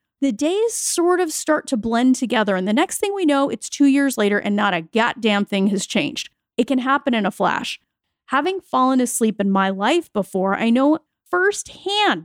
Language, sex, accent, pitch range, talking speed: English, female, American, 225-325 Hz, 200 wpm